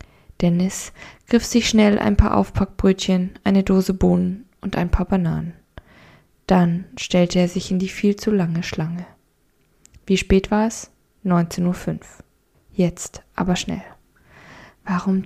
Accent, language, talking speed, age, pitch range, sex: German, German, 135 wpm, 20-39, 175-210 Hz, female